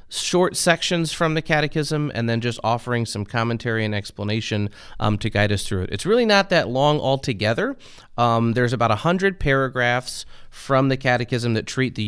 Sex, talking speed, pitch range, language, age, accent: male, 180 wpm, 115-155 Hz, English, 30-49, American